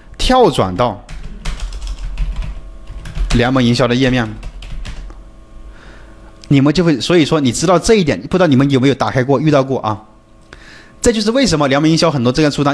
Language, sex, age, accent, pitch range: Chinese, male, 30-49, native, 110-150 Hz